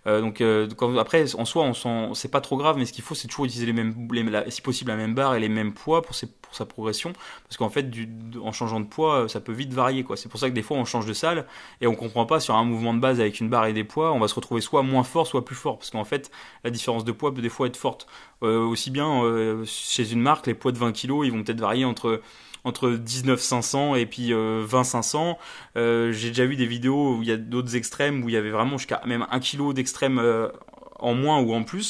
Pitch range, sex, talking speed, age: 115-130 Hz, male, 280 wpm, 20-39